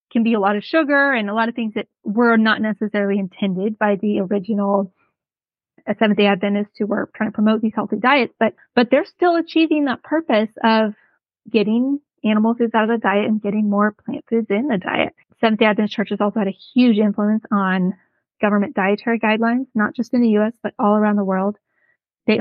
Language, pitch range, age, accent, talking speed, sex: English, 205-235 Hz, 20-39, American, 200 wpm, female